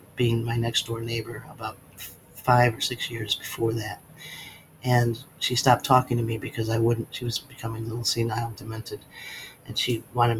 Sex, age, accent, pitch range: male, 40-59, American, 115-140 Hz